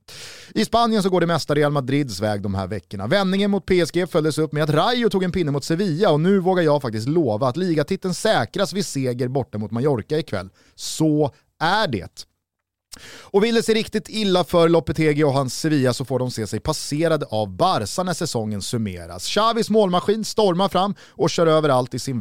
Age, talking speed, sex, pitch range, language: 30-49, 200 wpm, male, 125-185 Hz, Swedish